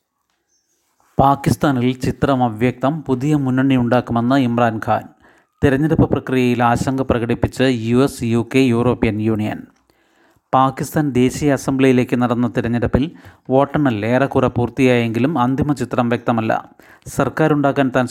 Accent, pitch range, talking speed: native, 125-140 Hz, 100 wpm